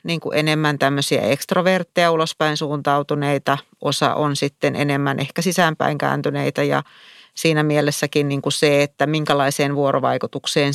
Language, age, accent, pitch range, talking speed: Finnish, 40-59, native, 140-165 Hz, 105 wpm